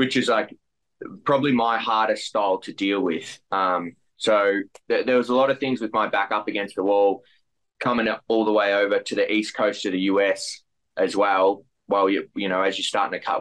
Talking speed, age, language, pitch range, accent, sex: 225 wpm, 20-39, English, 95-110 Hz, Australian, male